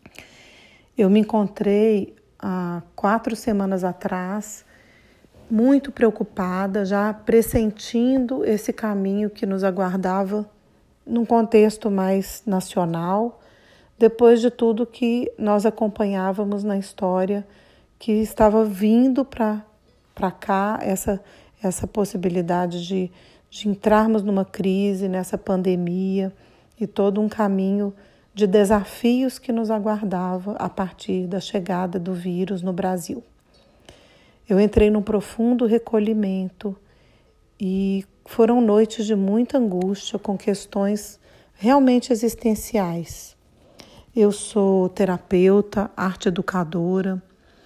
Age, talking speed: 40-59, 100 wpm